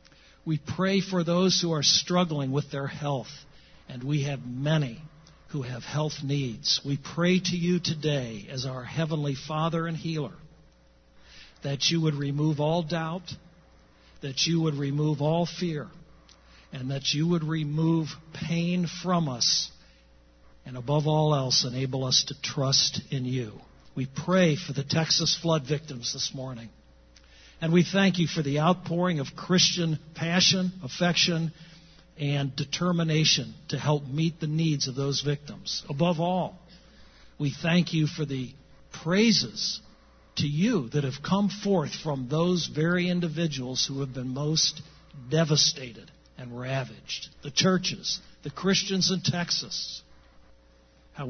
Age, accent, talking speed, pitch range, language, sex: 60-79, American, 140 wpm, 135-170 Hz, English, male